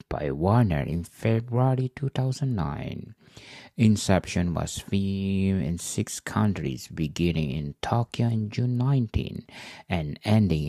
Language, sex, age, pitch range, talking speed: English, male, 50-69, 85-115 Hz, 105 wpm